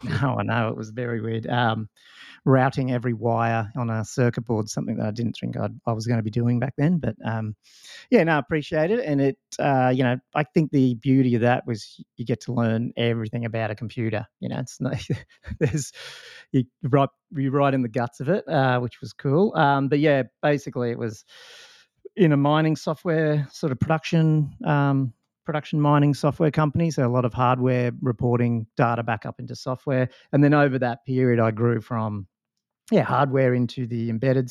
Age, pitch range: 30-49, 115-140 Hz